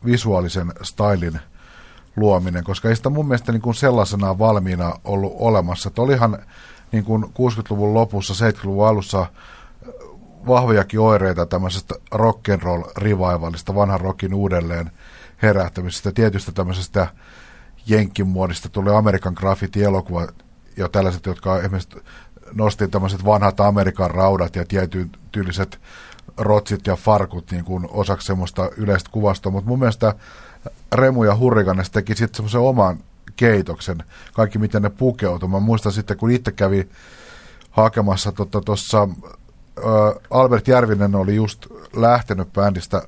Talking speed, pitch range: 110 wpm, 95-110 Hz